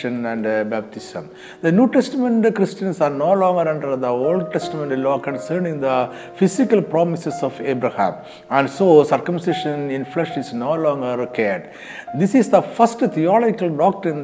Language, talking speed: Malayalam, 150 wpm